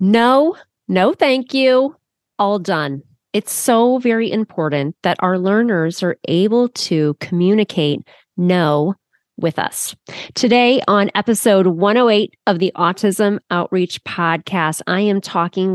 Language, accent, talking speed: English, American, 120 wpm